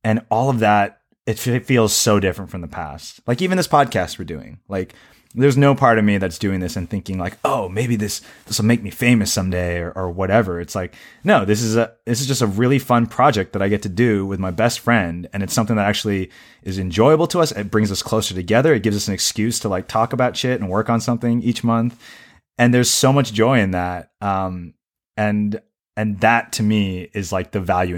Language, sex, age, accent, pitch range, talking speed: English, male, 20-39, American, 90-115 Hz, 235 wpm